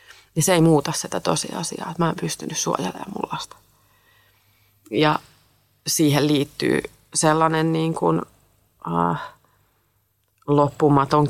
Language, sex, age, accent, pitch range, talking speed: Finnish, female, 30-49, native, 110-155 Hz, 105 wpm